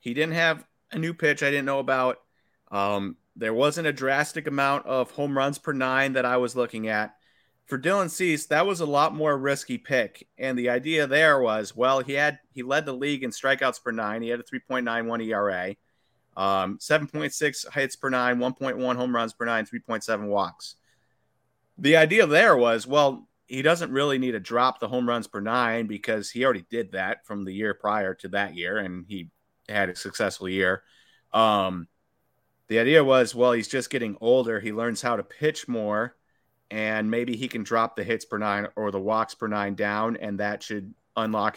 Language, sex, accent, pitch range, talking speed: English, male, American, 110-135 Hz, 200 wpm